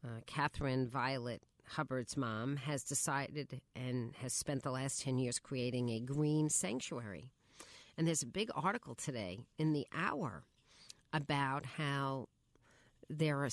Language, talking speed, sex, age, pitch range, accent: English, 135 wpm, female, 50-69, 135-170 Hz, American